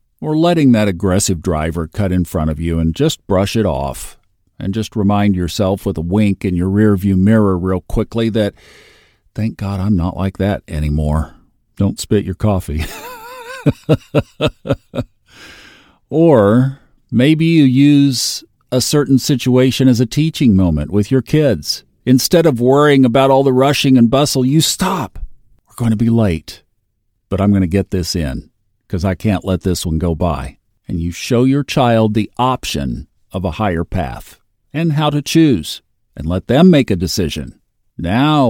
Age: 50-69